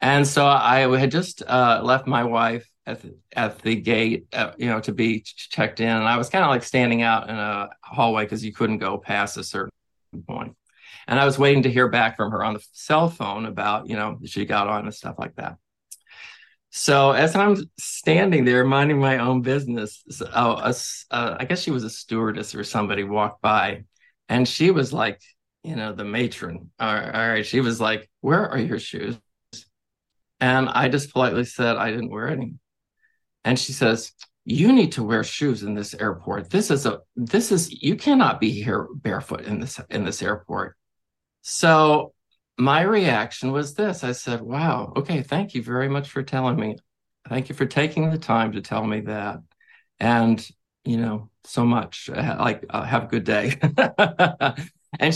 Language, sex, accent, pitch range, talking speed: English, male, American, 110-155 Hz, 190 wpm